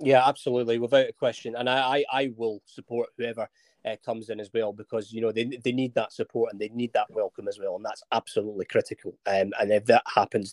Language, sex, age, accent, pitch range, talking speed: English, male, 30-49, British, 120-155 Hz, 235 wpm